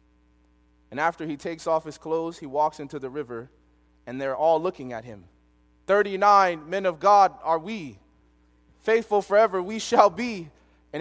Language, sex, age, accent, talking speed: English, male, 30-49, American, 165 wpm